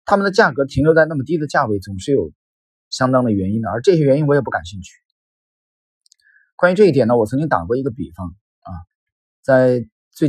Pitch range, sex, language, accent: 95-145 Hz, male, Chinese, native